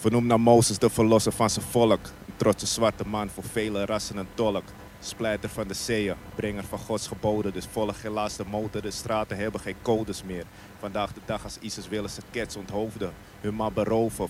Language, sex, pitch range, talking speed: Dutch, male, 100-110 Hz, 195 wpm